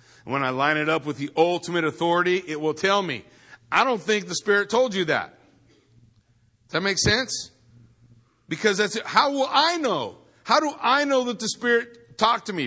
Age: 40-59